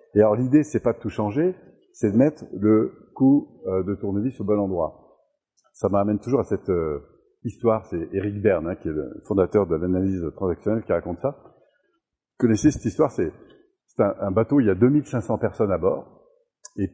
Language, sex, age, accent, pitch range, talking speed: French, male, 50-69, French, 100-140 Hz, 200 wpm